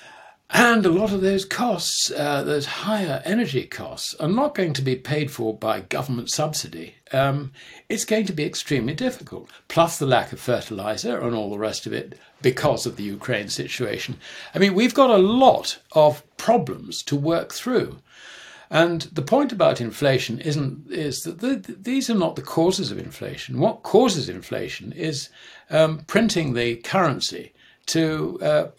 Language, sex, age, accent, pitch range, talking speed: English, male, 60-79, British, 130-190 Hz, 170 wpm